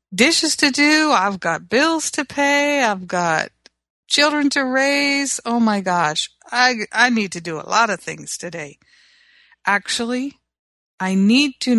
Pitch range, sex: 180-235 Hz, female